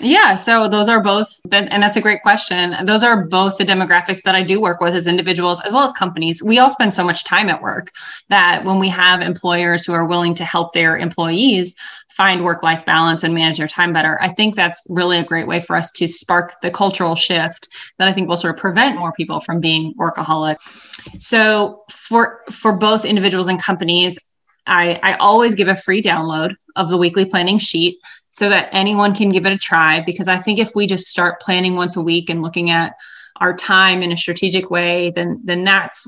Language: English